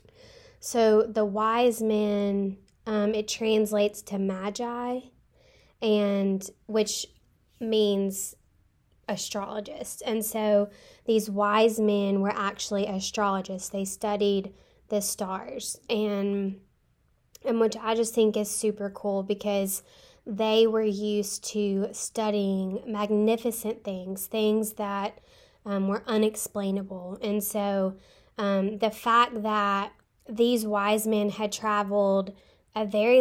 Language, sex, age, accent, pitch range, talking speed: English, female, 10-29, American, 195-220 Hz, 110 wpm